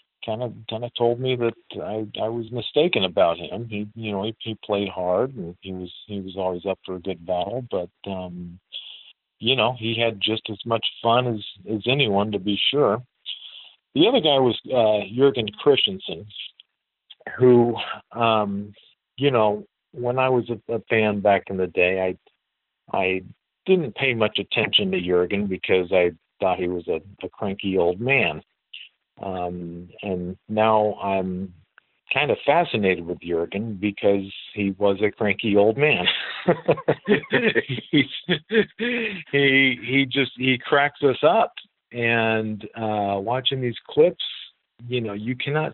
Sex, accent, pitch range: male, American, 95-120 Hz